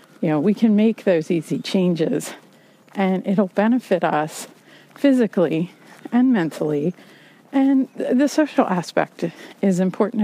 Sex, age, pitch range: female, 40-59, 185-230 Hz